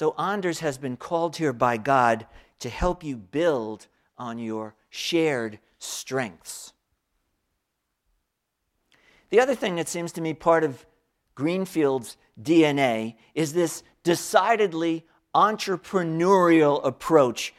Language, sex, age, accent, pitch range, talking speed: English, male, 50-69, American, 145-185 Hz, 110 wpm